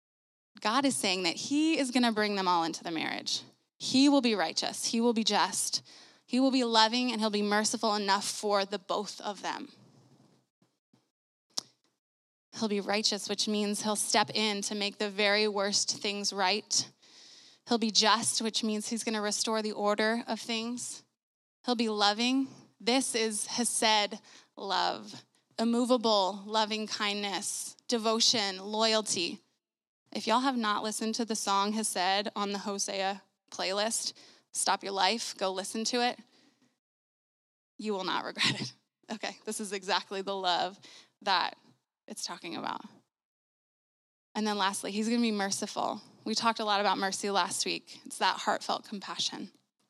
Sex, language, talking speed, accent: female, English, 155 wpm, American